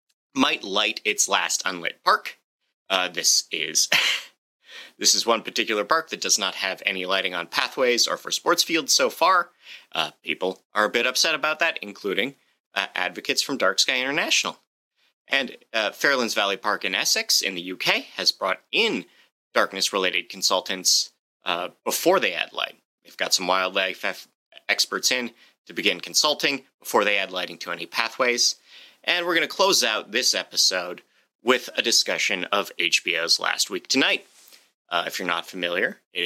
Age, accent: 30-49, American